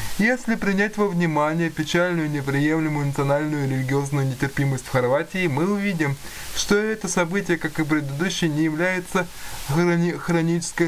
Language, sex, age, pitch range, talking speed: Russian, male, 20-39, 140-175 Hz, 125 wpm